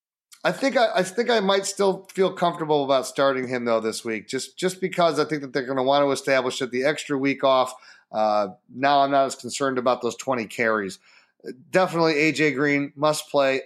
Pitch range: 120-150 Hz